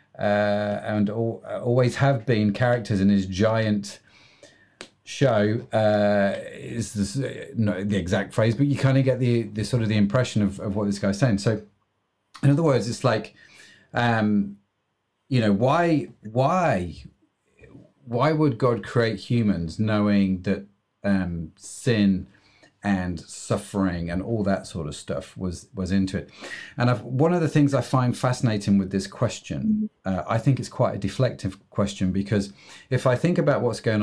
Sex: male